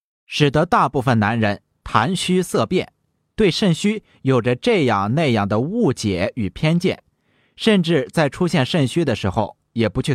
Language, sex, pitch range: Chinese, male, 110-165 Hz